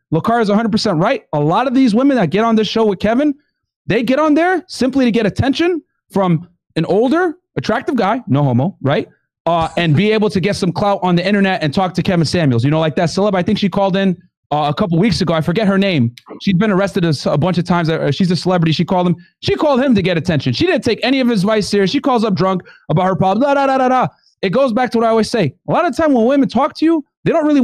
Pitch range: 180-245 Hz